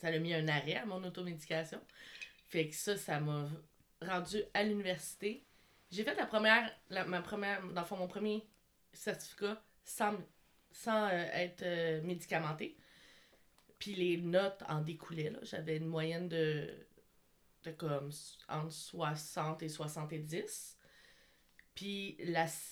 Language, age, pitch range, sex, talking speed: French, 20-39, 165-195 Hz, female, 135 wpm